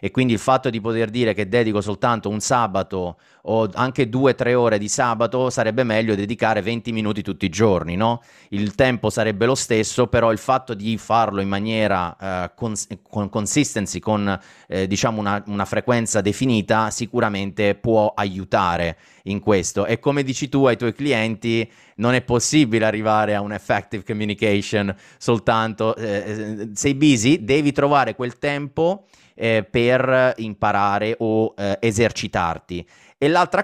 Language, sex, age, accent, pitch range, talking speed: Italian, male, 30-49, native, 105-130 Hz, 155 wpm